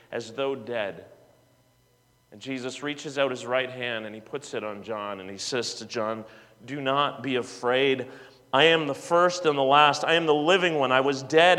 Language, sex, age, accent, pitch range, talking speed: English, male, 40-59, American, 150-195 Hz, 205 wpm